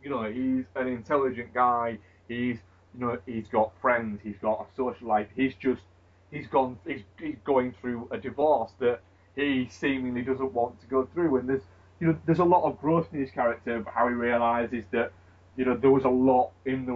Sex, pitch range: male, 105-130 Hz